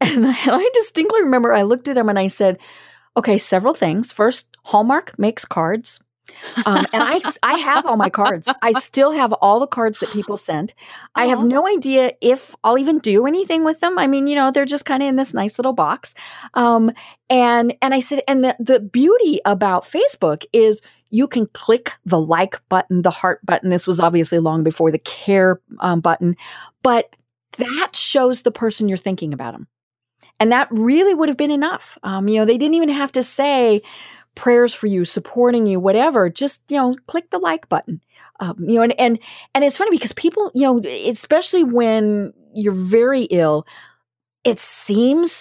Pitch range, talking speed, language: 205-275 Hz, 195 wpm, English